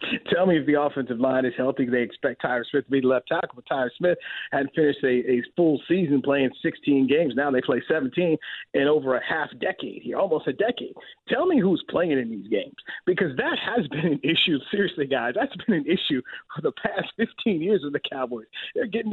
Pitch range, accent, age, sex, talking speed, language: 140-230 Hz, American, 40-59, male, 225 wpm, English